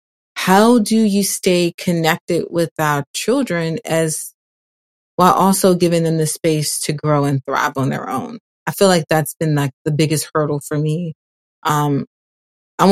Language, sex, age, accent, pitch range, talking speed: English, female, 30-49, American, 155-180 Hz, 165 wpm